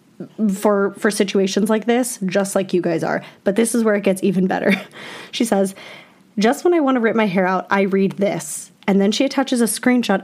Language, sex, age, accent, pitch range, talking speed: English, female, 10-29, American, 190-230 Hz, 225 wpm